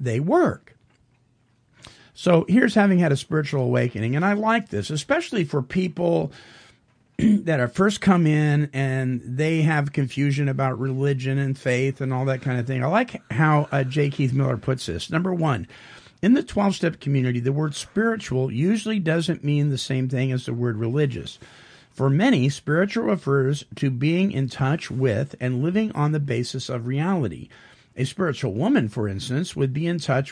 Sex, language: male, English